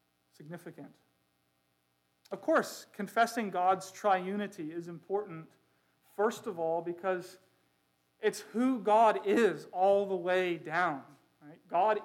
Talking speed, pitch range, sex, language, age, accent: 105 wpm, 160-230 Hz, male, English, 40-59, American